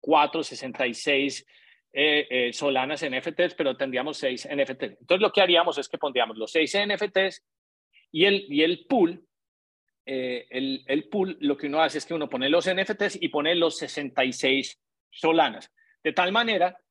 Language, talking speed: Spanish, 165 wpm